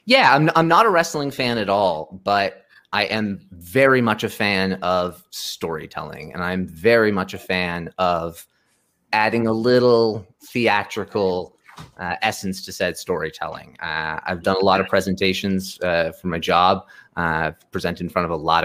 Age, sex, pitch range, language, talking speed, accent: 30-49, male, 90-115 Hz, English, 165 wpm, American